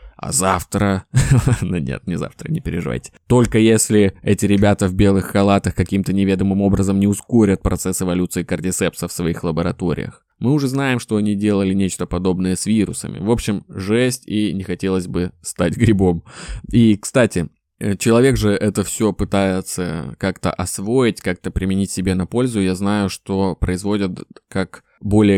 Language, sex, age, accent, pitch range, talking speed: Russian, male, 20-39, native, 90-110 Hz, 155 wpm